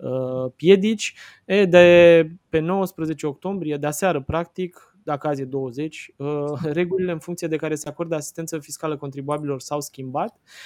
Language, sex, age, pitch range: Romanian, male, 20-39, 140-175 Hz